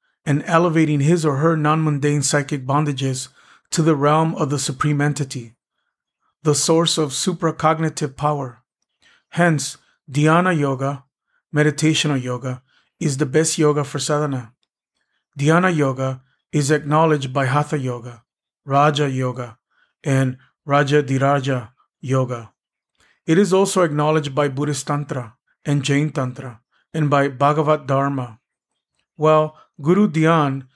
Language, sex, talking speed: English, male, 120 wpm